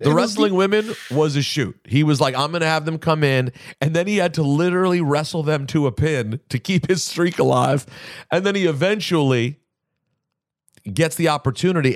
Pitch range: 110-150 Hz